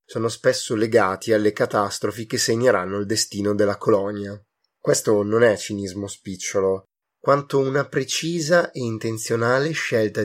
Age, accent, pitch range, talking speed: 20-39, native, 95-115 Hz, 130 wpm